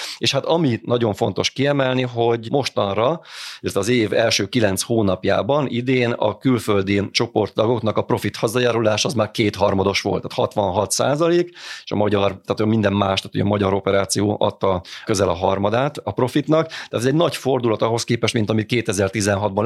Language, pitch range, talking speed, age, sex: Hungarian, 100-125 Hz, 160 wpm, 30-49, male